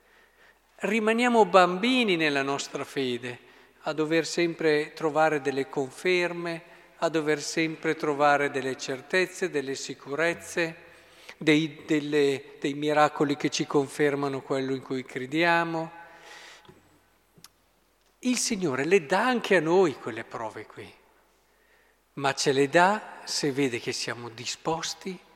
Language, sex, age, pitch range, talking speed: Italian, male, 50-69, 135-180 Hz, 115 wpm